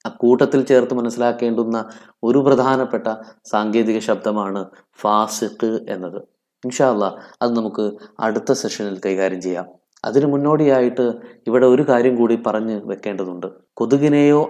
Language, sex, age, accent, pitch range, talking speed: Malayalam, male, 20-39, native, 115-145 Hz, 110 wpm